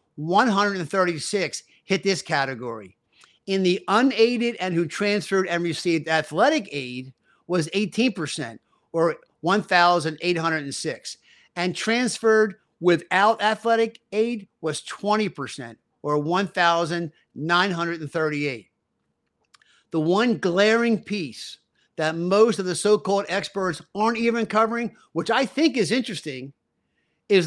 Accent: American